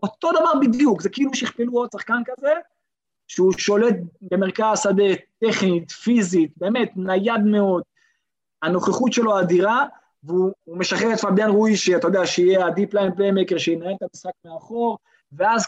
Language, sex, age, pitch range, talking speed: Hebrew, male, 20-39, 175-220 Hz, 140 wpm